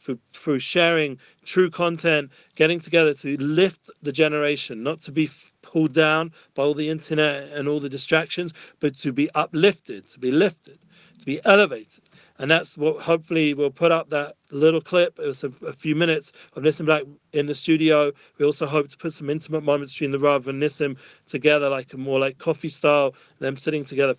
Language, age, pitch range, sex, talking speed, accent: English, 40-59, 140-155 Hz, male, 195 wpm, British